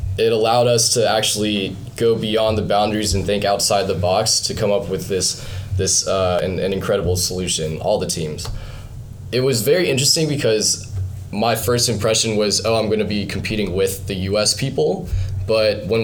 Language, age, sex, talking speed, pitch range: English, 20-39, male, 185 wpm, 100-120 Hz